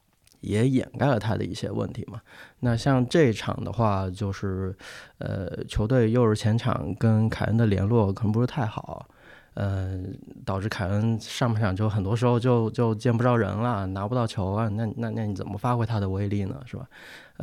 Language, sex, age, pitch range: Chinese, male, 20-39, 100-120 Hz